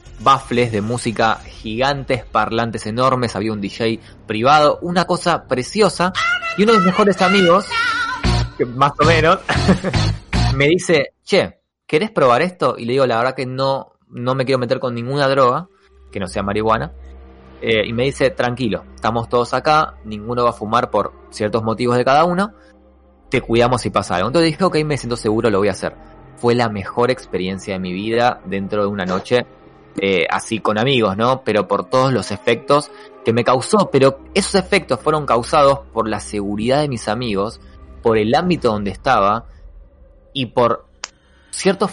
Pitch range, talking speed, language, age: 105-145 Hz, 175 wpm, Spanish, 20-39